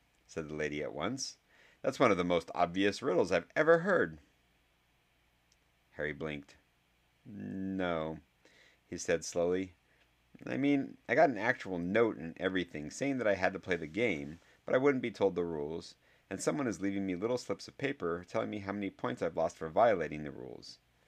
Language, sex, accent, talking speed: English, male, American, 185 wpm